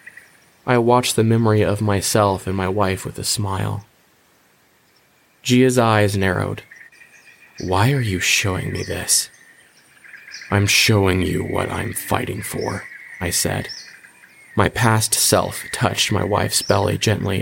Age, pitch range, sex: 20-39, 95-115 Hz, male